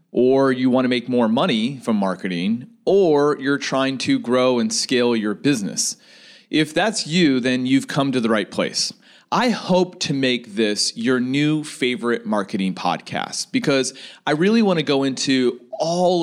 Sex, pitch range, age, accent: male, 120-165 Hz, 30-49, American